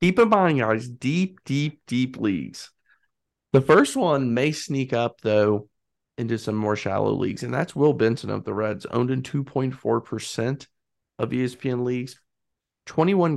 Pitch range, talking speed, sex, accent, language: 115-145 Hz, 155 wpm, male, American, English